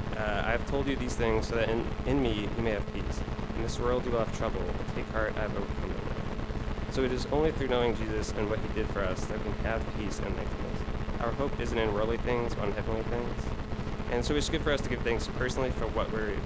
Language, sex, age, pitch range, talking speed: English, male, 20-39, 105-115 Hz, 265 wpm